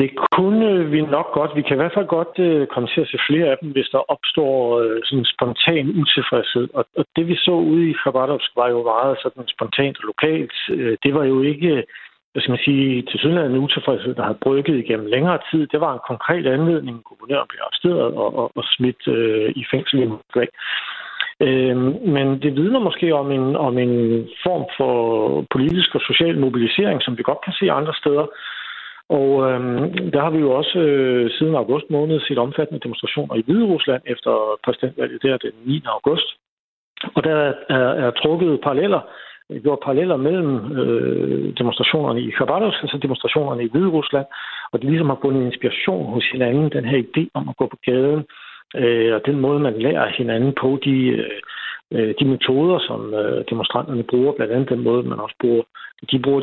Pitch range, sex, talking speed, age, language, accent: 125-155 Hz, male, 190 wpm, 60-79, Danish, native